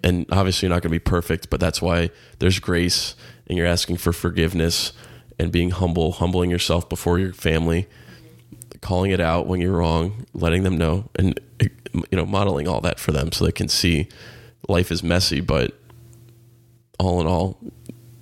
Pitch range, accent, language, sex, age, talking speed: 85-100 Hz, American, English, male, 20-39, 180 wpm